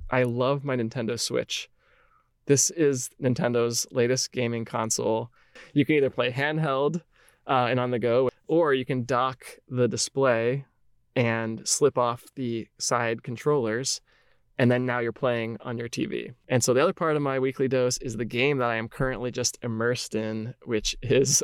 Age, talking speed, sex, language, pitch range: 20-39, 175 wpm, male, English, 120-145 Hz